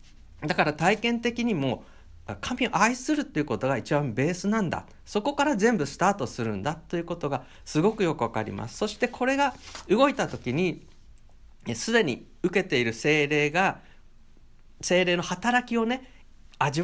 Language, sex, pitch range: Japanese, male, 120-200 Hz